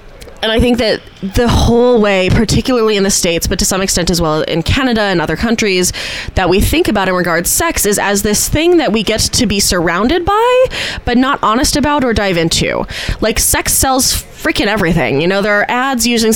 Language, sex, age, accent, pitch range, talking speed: English, female, 20-39, American, 180-230 Hz, 215 wpm